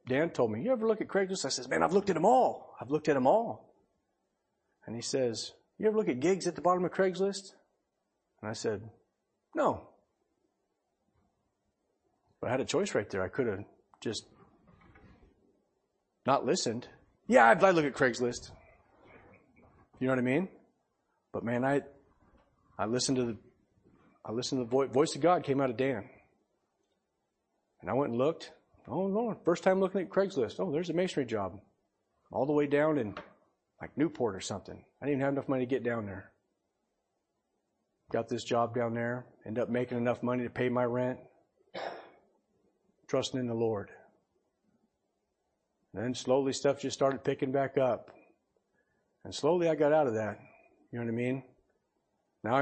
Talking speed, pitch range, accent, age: 175 wpm, 125-155 Hz, American, 40-59